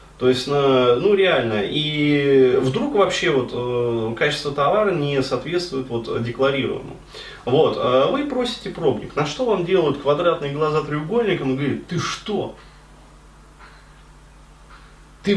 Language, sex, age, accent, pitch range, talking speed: Russian, male, 30-49, native, 130-185 Hz, 115 wpm